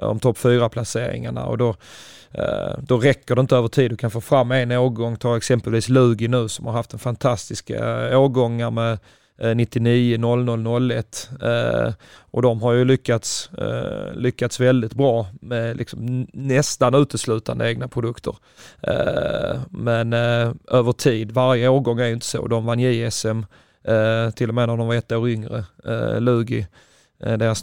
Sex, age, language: male, 30-49, Swedish